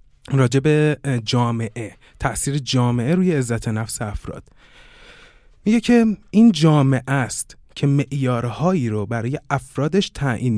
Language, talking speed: Persian, 110 wpm